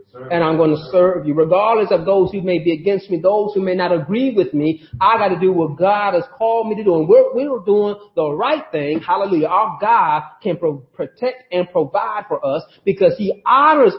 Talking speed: 225 wpm